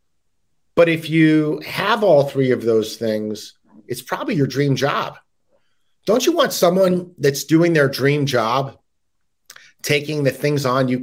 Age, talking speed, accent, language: 40-59, 150 wpm, American, English